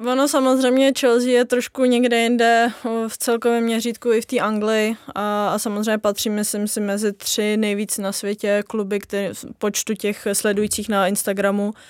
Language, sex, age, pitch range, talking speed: Czech, female, 20-39, 205-215 Hz, 160 wpm